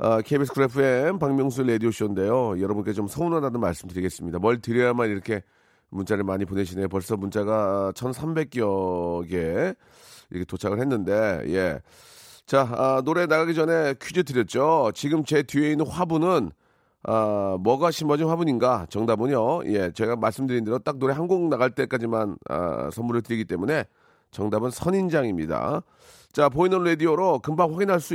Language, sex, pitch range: Korean, male, 115-170 Hz